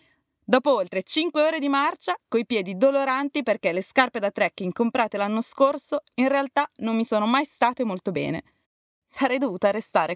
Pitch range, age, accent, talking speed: 190-265 Hz, 20-39, native, 170 wpm